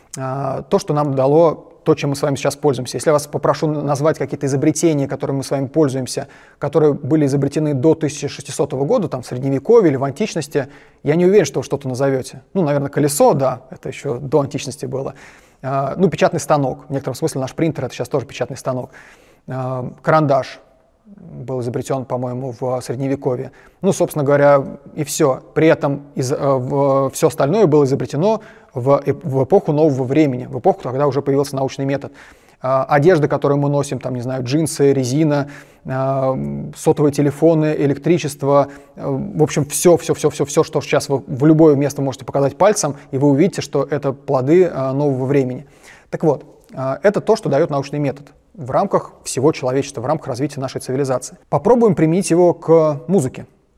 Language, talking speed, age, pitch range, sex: Russian, 170 wpm, 30-49, 135-155 Hz, male